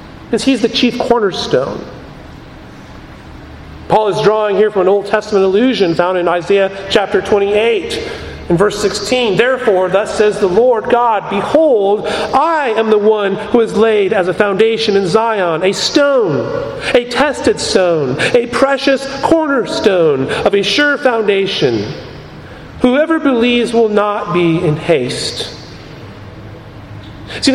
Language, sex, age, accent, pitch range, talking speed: English, male, 40-59, American, 195-255 Hz, 135 wpm